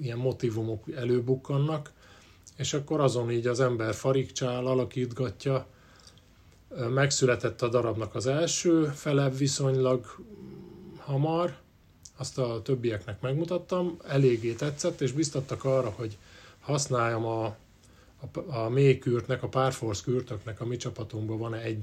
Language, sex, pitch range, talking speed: Hungarian, male, 110-135 Hz, 110 wpm